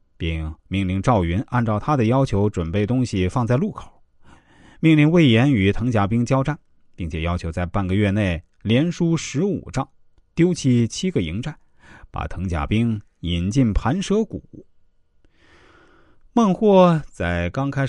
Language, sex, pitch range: Chinese, male, 90-140 Hz